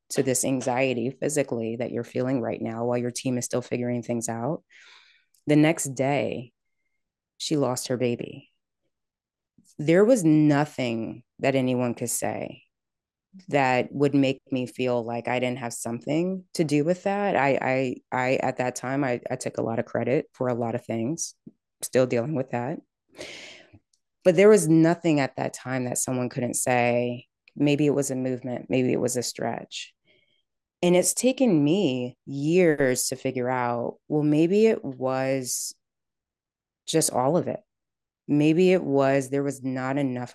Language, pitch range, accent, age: English, 125-150 Hz, American, 20-39